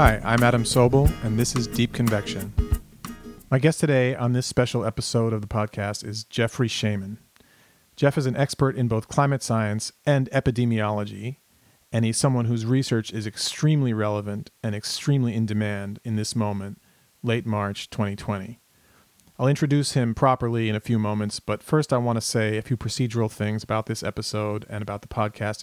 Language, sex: English, male